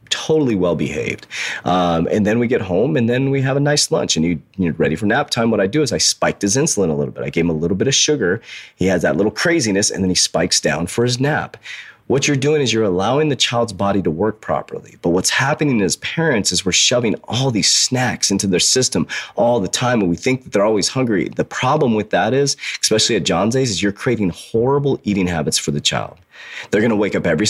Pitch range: 85-125 Hz